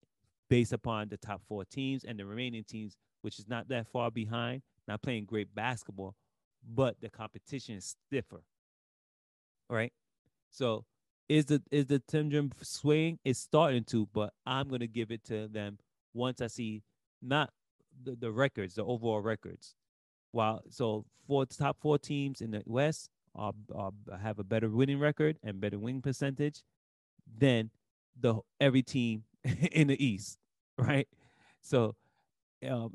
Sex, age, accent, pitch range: male, 30-49, American, 105-130 Hz